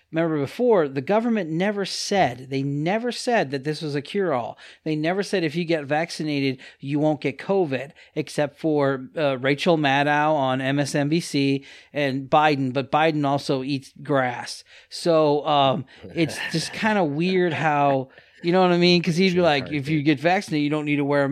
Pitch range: 140-175 Hz